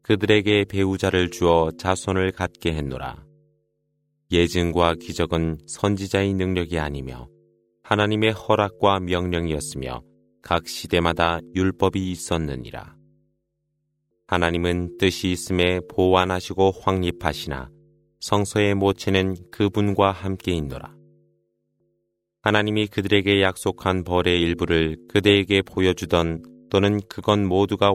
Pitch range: 85-100 Hz